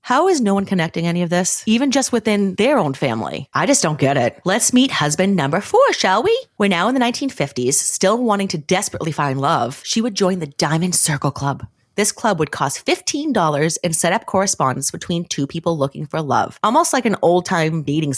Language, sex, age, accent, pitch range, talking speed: English, female, 30-49, American, 145-205 Hz, 210 wpm